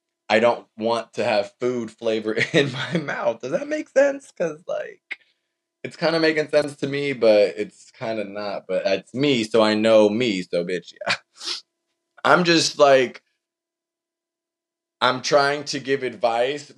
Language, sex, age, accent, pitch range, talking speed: English, male, 20-39, American, 110-155 Hz, 165 wpm